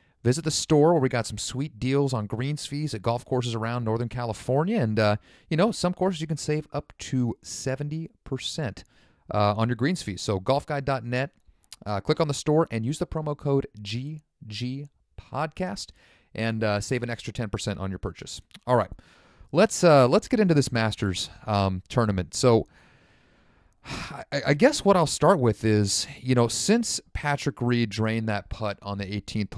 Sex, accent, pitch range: male, American, 105-140 Hz